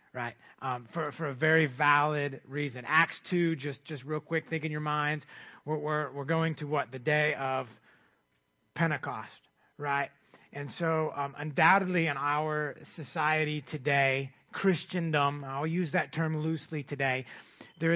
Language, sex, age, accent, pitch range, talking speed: English, male, 30-49, American, 140-170 Hz, 150 wpm